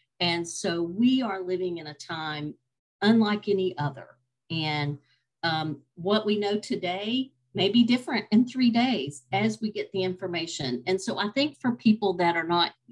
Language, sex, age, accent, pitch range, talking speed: English, female, 50-69, American, 150-210 Hz, 170 wpm